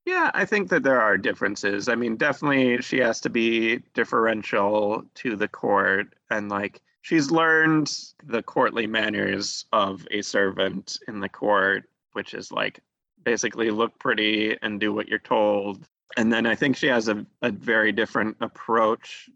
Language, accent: English, American